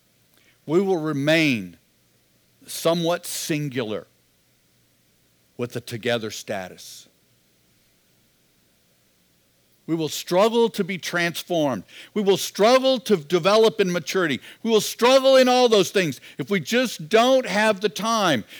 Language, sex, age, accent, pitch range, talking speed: English, male, 60-79, American, 165-230 Hz, 115 wpm